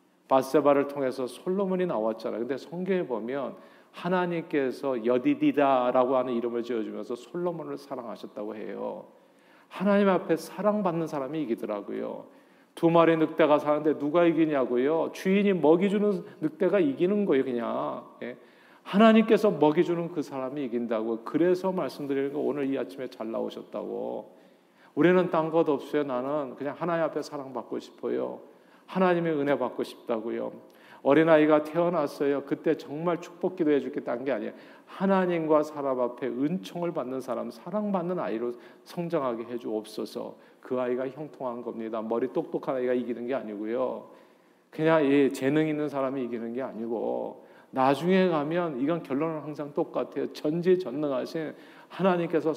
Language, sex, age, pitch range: Korean, male, 40-59, 130-175 Hz